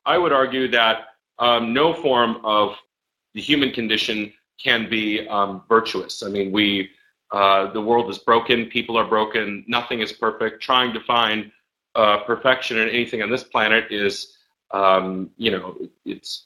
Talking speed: 160 wpm